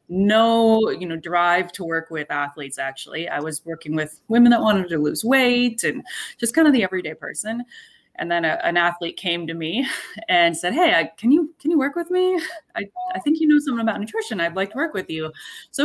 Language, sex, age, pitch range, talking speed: English, female, 20-39, 175-240 Hz, 225 wpm